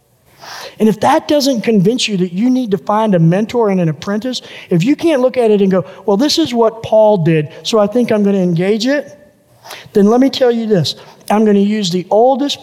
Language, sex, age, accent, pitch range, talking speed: English, male, 50-69, American, 180-240 Hz, 230 wpm